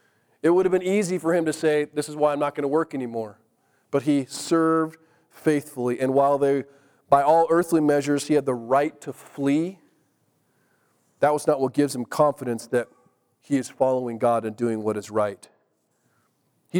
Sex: male